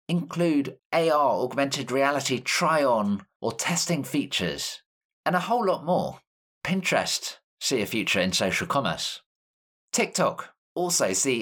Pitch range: 120-175 Hz